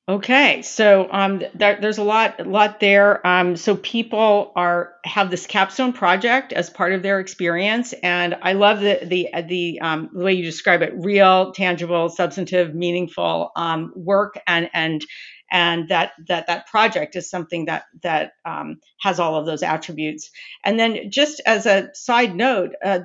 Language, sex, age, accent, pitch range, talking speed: English, female, 50-69, American, 175-220 Hz, 170 wpm